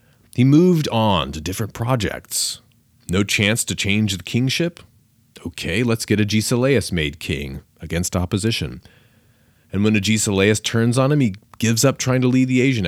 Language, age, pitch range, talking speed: English, 40-59, 90-125 Hz, 160 wpm